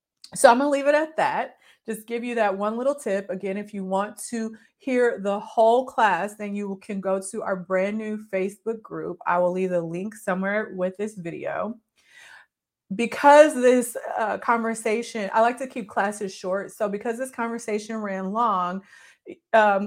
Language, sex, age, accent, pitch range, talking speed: English, female, 30-49, American, 195-240 Hz, 180 wpm